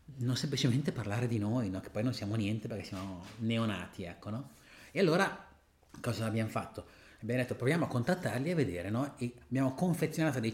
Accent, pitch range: native, 110-160 Hz